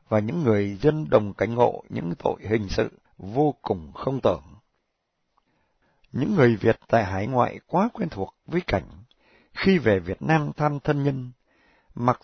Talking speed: 165 wpm